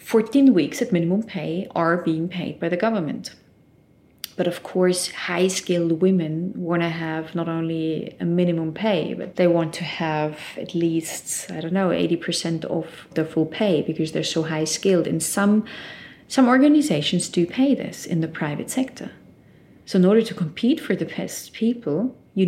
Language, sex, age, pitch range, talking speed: English, female, 30-49, 165-200 Hz, 170 wpm